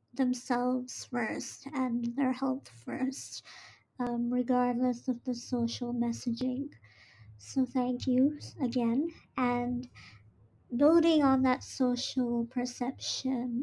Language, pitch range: English, 250-275 Hz